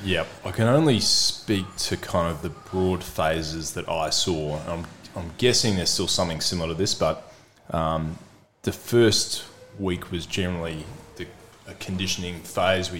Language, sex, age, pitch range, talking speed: English, male, 20-39, 80-95 Hz, 160 wpm